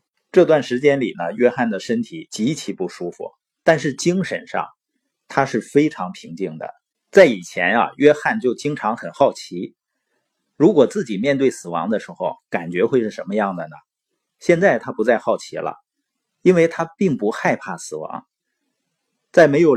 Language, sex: Chinese, male